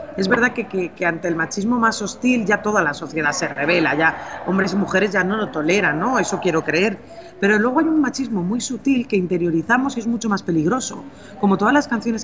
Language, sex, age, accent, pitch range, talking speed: Spanish, female, 30-49, Spanish, 180-230 Hz, 225 wpm